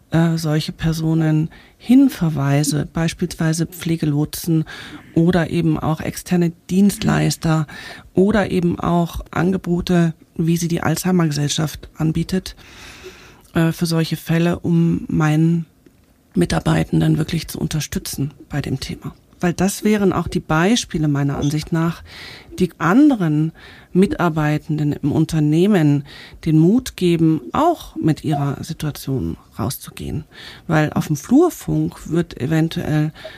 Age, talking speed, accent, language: 40-59, 105 wpm, German, German